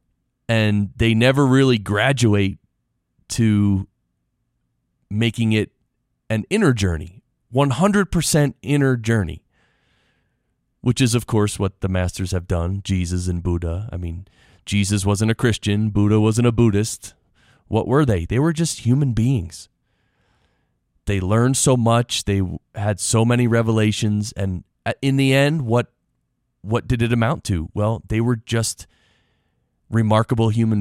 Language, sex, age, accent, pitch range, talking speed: English, male, 30-49, American, 95-120 Hz, 135 wpm